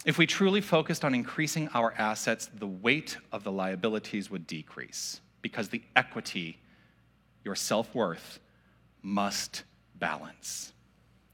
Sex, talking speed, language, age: male, 115 wpm, English, 40-59